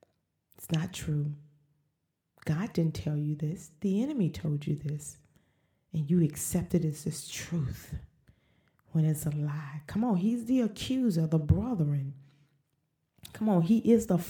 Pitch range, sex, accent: 150-180 Hz, female, American